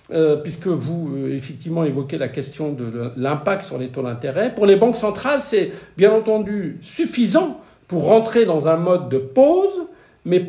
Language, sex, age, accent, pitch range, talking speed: French, male, 50-69, French, 165-230 Hz, 160 wpm